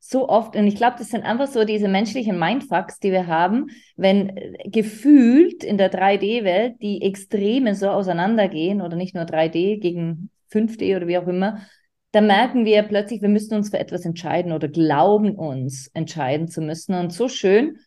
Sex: female